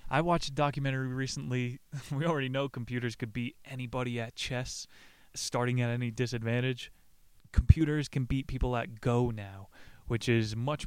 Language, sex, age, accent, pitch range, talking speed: English, male, 20-39, American, 115-135 Hz, 155 wpm